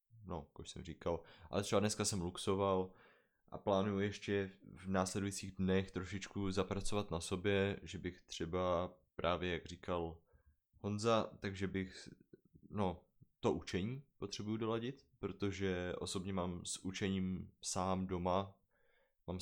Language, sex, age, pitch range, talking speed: Czech, male, 20-39, 95-115 Hz, 125 wpm